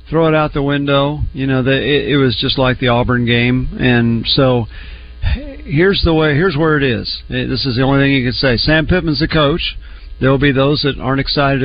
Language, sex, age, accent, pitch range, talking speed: English, male, 50-69, American, 120-150 Hz, 215 wpm